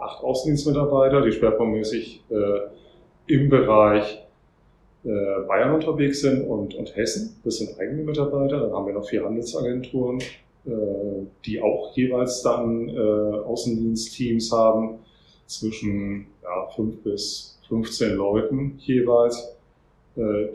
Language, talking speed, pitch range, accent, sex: English, 115 wpm, 100-125 Hz, German, male